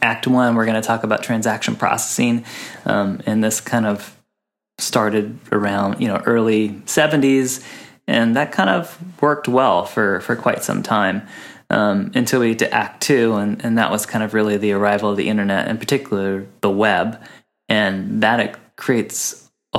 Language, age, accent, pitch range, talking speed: English, 20-39, American, 100-115 Hz, 175 wpm